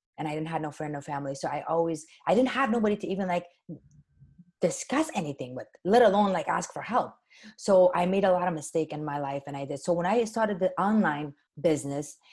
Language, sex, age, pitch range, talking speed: English, female, 30-49, 165-205 Hz, 230 wpm